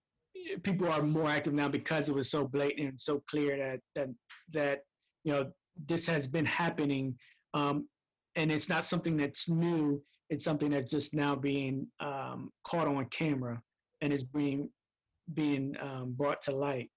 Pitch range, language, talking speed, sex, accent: 145-165 Hz, English, 165 wpm, male, American